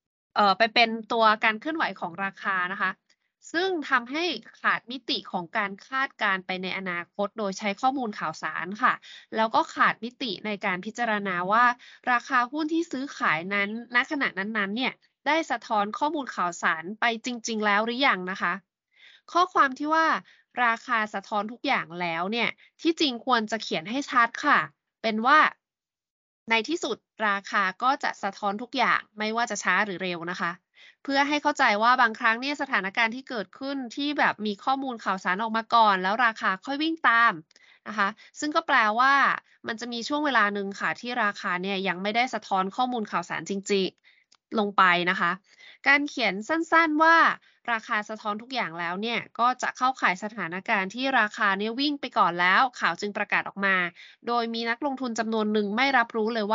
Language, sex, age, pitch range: Thai, female, 20-39, 200-265 Hz